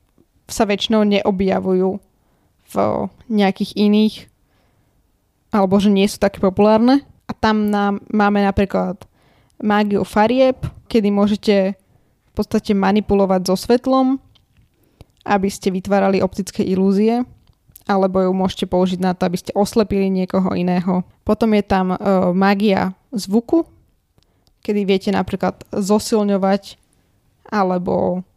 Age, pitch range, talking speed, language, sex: 20-39, 190-210 Hz, 110 wpm, Slovak, female